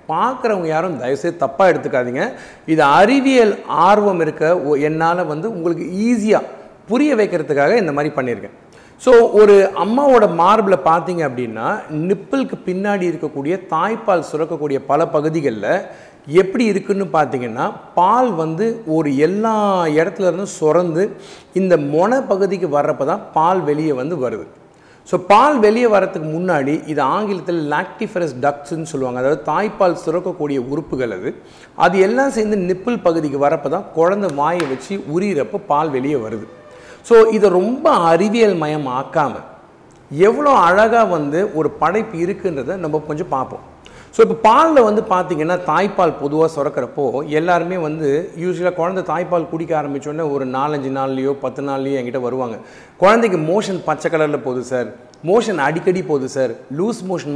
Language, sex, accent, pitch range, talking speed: Tamil, male, native, 150-200 Hz, 130 wpm